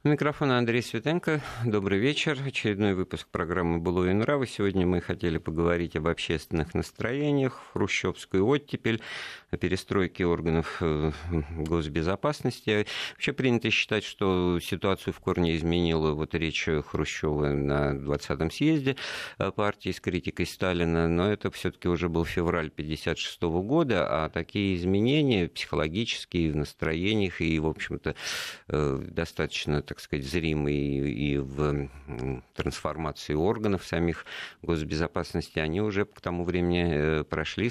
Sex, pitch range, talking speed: male, 80-100 Hz, 120 wpm